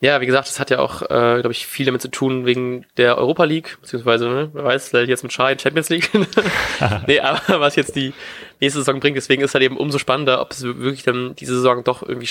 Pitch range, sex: 120-135 Hz, male